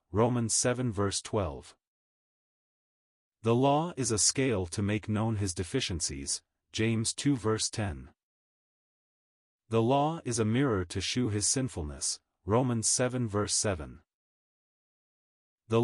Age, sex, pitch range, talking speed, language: 30-49, male, 95-120 Hz, 120 wpm, English